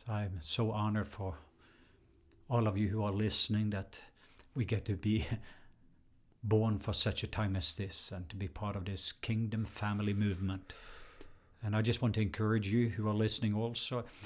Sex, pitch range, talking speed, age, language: male, 100-120 Hz, 175 wpm, 50-69, English